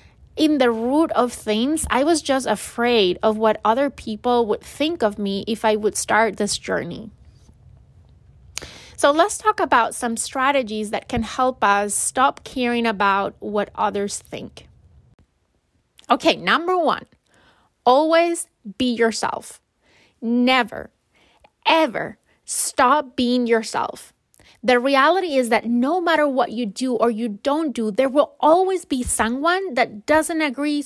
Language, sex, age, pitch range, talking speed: English, female, 20-39, 230-300 Hz, 140 wpm